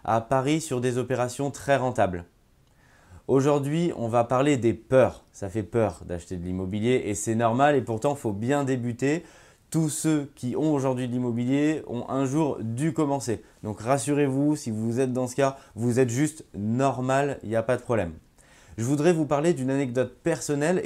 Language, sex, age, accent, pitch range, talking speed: French, male, 20-39, French, 110-140 Hz, 185 wpm